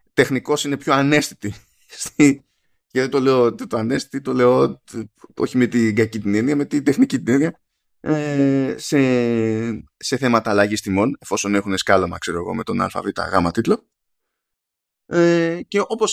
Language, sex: Greek, male